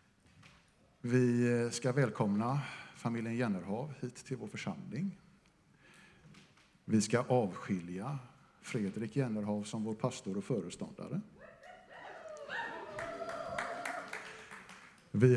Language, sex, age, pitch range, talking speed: Swedish, male, 50-69, 115-155 Hz, 80 wpm